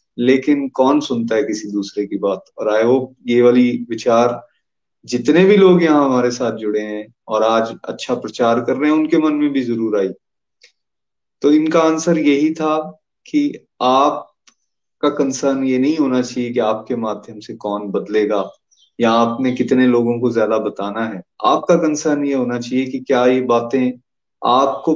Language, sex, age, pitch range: Hindi, male, 30-49, 115-145 Hz